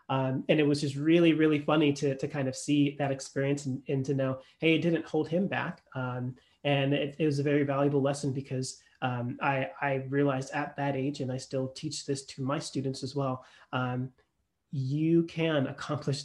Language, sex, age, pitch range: English, male, 30-49, 135-160 Hz